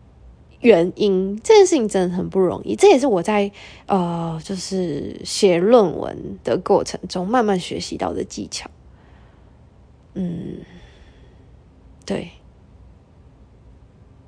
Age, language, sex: 20-39, Chinese, female